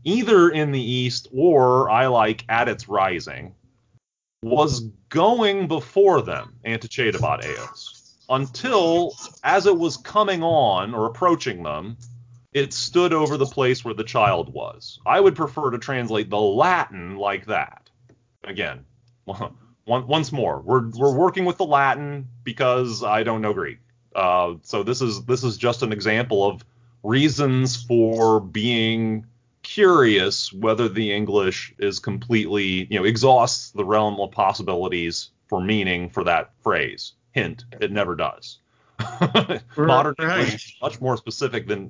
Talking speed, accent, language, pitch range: 145 wpm, American, English, 110-135 Hz